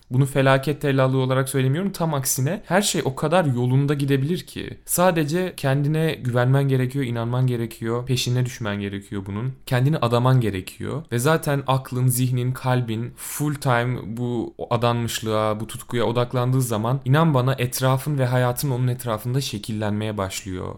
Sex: male